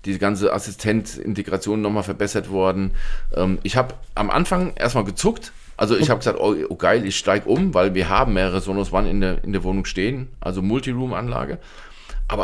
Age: 40-59